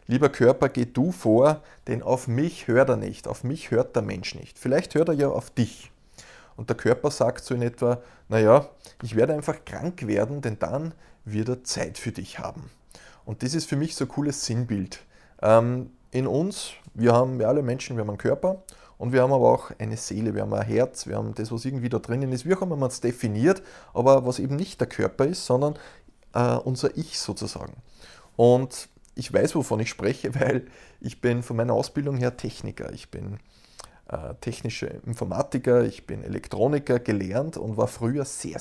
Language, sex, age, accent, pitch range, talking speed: German, male, 20-39, Austrian, 115-145 Hz, 195 wpm